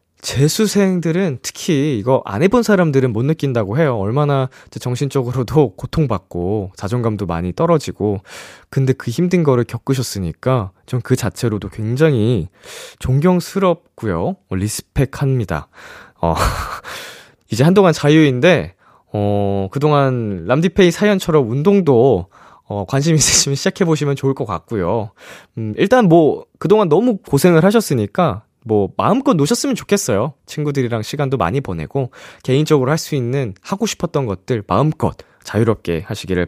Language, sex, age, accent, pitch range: Korean, male, 20-39, native, 110-175 Hz